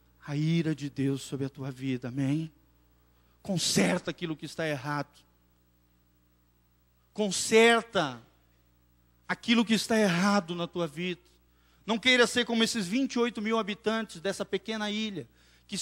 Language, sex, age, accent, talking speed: Portuguese, male, 40-59, Brazilian, 130 wpm